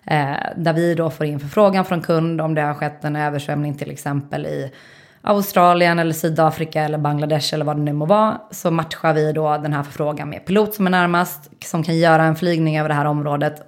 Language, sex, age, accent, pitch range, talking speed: Swedish, female, 20-39, native, 155-175 Hz, 215 wpm